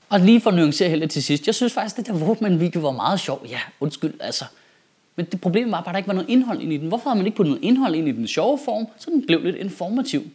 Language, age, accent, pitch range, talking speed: Danish, 30-49, native, 160-230 Hz, 295 wpm